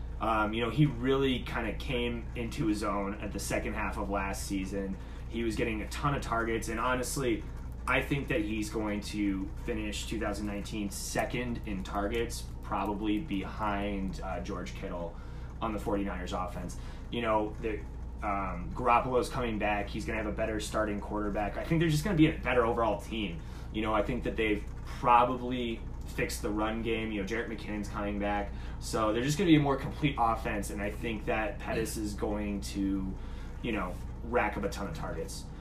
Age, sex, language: 20-39, male, English